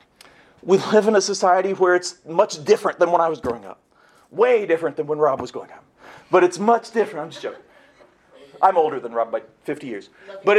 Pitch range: 185-235 Hz